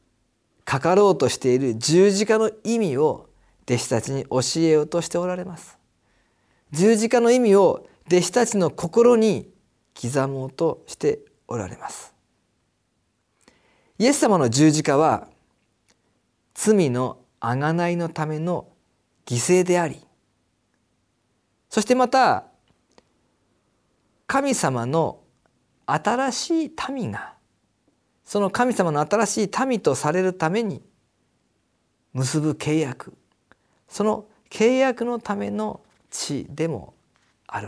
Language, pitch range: Japanese, 135-210 Hz